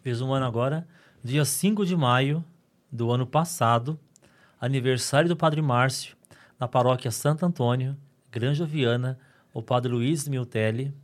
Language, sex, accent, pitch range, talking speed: Portuguese, male, Brazilian, 115-145 Hz, 135 wpm